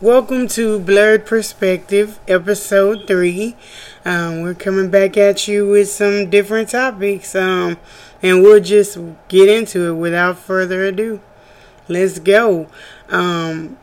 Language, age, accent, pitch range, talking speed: English, 20-39, American, 185-215 Hz, 125 wpm